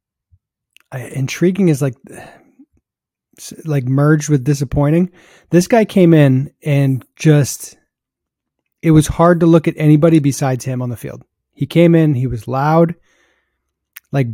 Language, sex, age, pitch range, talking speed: English, male, 30-49, 135-165 Hz, 135 wpm